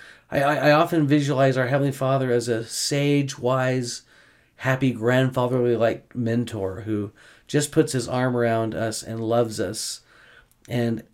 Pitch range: 115-130 Hz